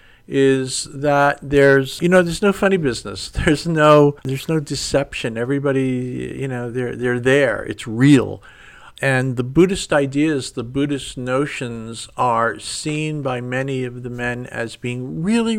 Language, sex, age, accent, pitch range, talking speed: English, male, 50-69, American, 120-145 Hz, 150 wpm